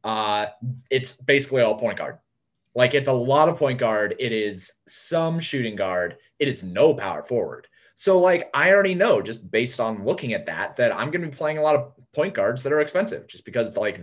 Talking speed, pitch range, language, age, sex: 220 wpm, 105-140 Hz, English, 20-39, male